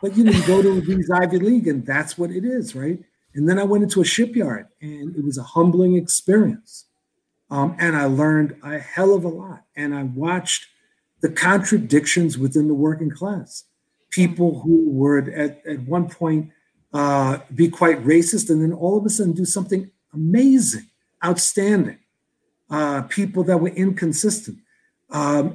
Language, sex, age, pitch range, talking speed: English, male, 50-69, 150-195 Hz, 170 wpm